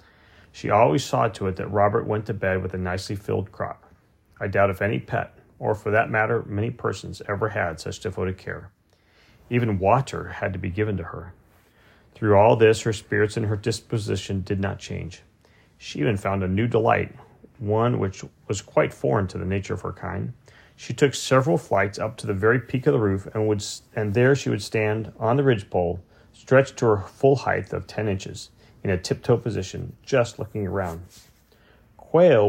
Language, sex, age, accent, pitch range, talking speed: English, male, 40-59, American, 95-115 Hz, 195 wpm